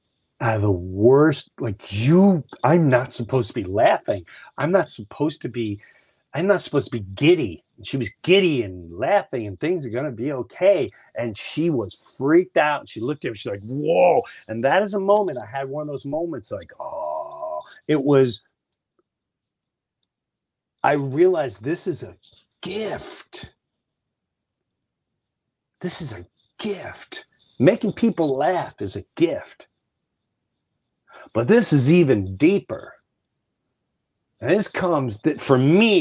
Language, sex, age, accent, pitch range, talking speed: English, male, 40-59, American, 120-185 Hz, 150 wpm